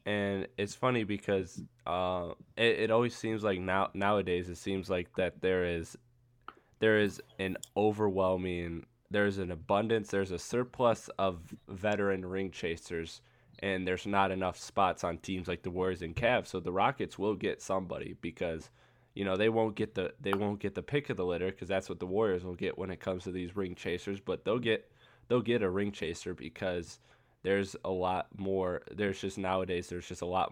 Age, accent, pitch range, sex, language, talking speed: 20-39, American, 90-105 Hz, male, English, 195 wpm